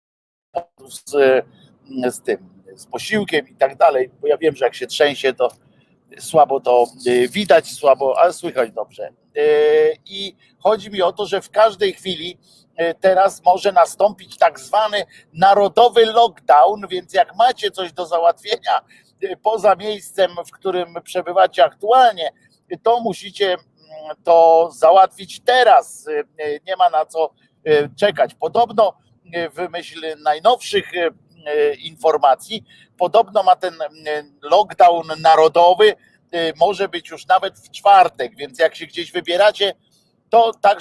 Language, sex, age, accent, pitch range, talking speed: Polish, male, 50-69, native, 155-205 Hz, 125 wpm